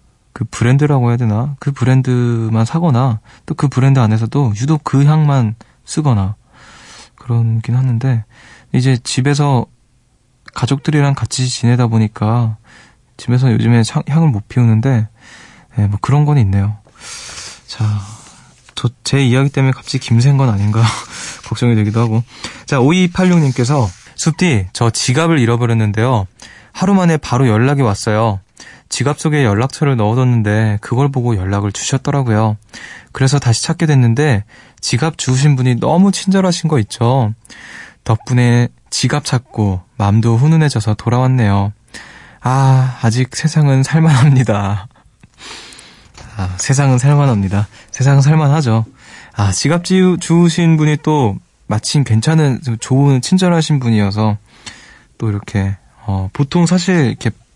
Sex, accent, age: male, native, 20-39